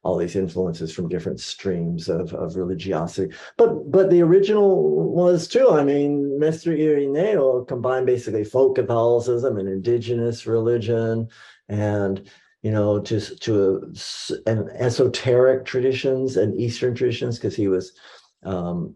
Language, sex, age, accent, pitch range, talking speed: English, male, 50-69, American, 100-125 Hz, 135 wpm